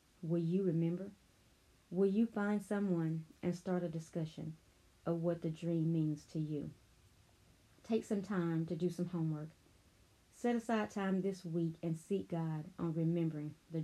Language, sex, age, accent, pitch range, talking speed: English, female, 30-49, American, 160-180 Hz, 155 wpm